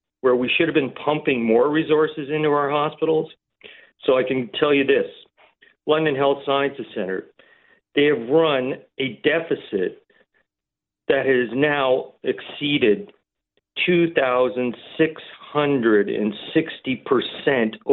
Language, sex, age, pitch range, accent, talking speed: English, male, 50-69, 145-205 Hz, American, 105 wpm